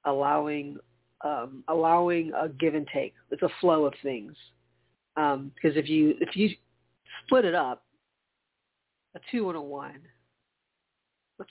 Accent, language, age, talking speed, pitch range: American, English, 40-59, 140 wpm, 135-160 Hz